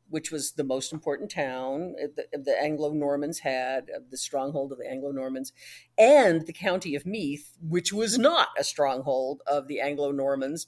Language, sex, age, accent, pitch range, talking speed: English, female, 50-69, American, 135-190 Hz, 150 wpm